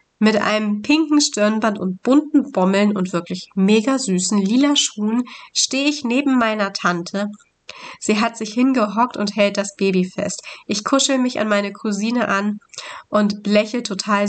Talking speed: 155 wpm